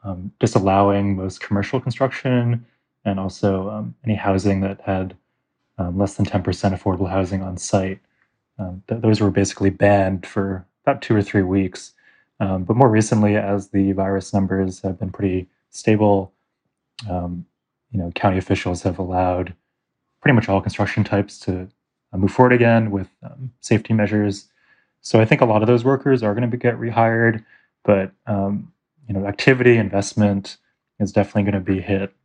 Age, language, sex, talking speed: 20-39, English, male, 170 wpm